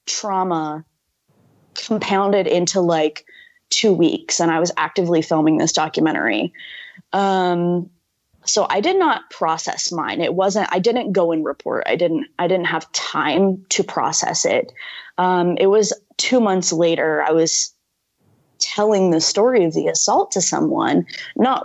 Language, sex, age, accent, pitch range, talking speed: English, female, 20-39, American, 165-220 Hz, 145 wpm